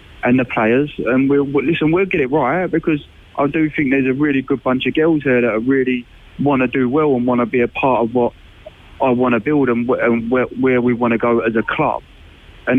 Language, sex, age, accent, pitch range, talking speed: English, male, 20-39, British, 115-135 Hz, 255 wpm